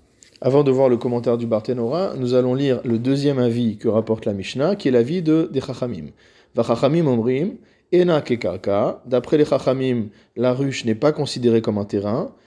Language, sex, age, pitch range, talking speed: French, male, 40-59, 115-145 Hz, 180 wpm